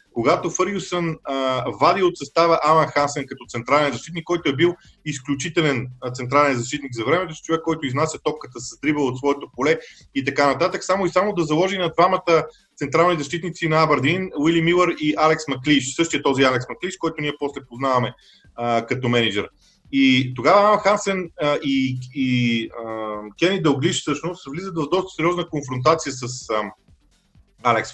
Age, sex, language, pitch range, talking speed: 30-49, male, Bulgarian, 135-175 Hz, 160 wpm